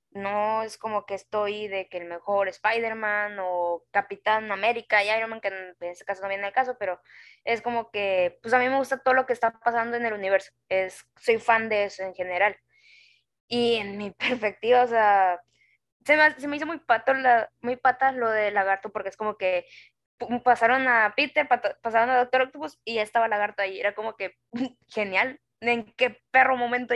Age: 10-29